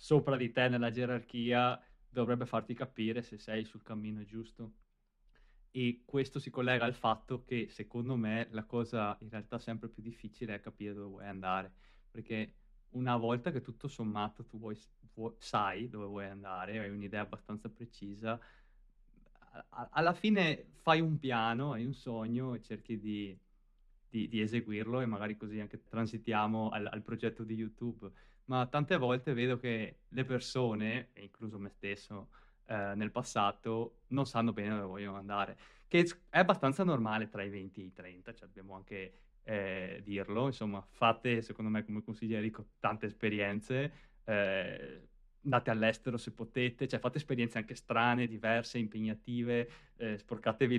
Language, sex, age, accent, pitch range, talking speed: Italian, male, 20-39, native, 105-125 Hz, 155 wpm